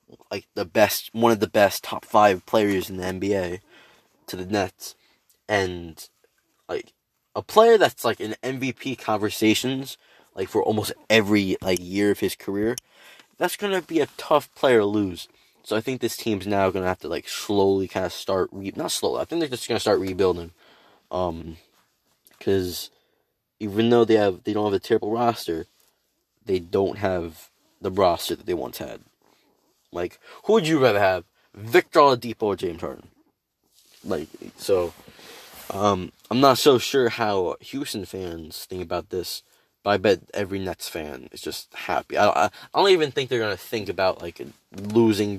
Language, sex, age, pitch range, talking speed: English, male, 20-39, 95-115 Hz, 180 wpm